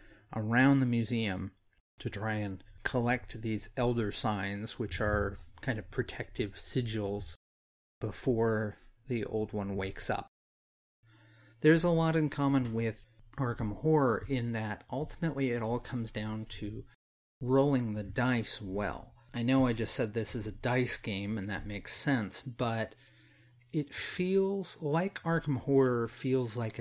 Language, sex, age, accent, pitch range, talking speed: English, male, 40-59, American, 110-130 Hz, 145 wpm